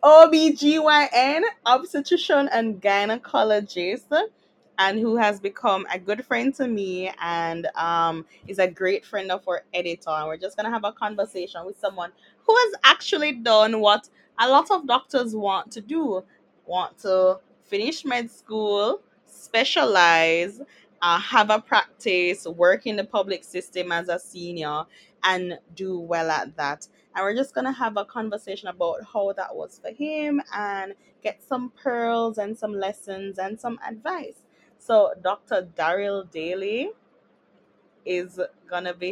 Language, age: English, 20-39